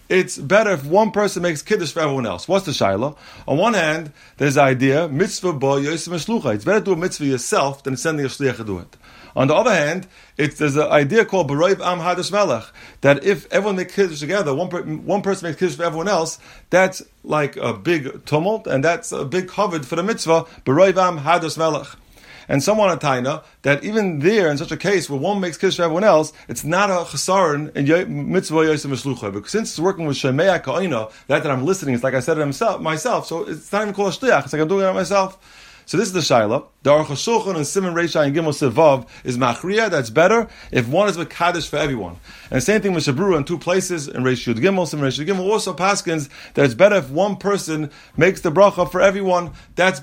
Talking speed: 225 wpm